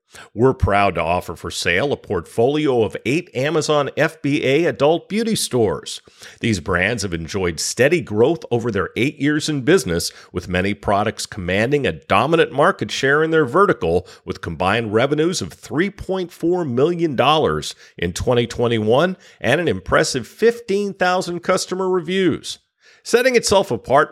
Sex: male